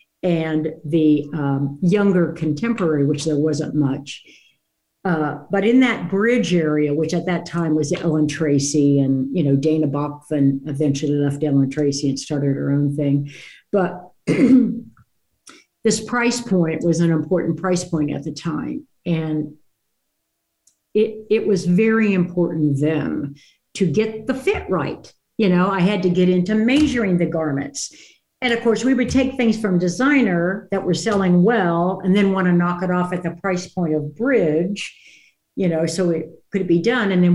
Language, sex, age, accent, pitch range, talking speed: English, female, 60-79, American, 155-210 Hz, 170 wpm